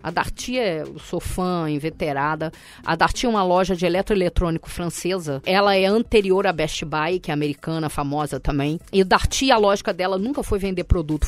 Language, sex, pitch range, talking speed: Portuguese, female, 175-230 Hz, 175 wpm